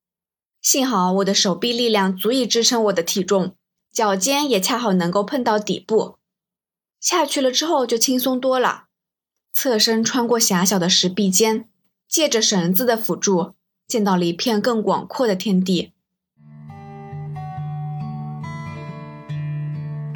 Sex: female